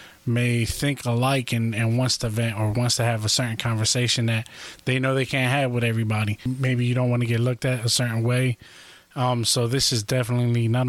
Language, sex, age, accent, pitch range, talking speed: English, male, 20-39, American, 115-125 Hz, 220 wpm